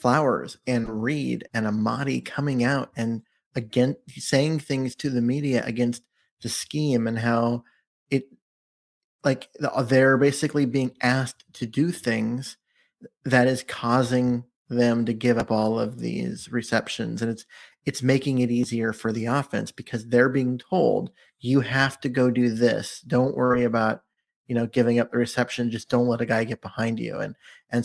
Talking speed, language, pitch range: 165 wpm, English, 120-135 Hz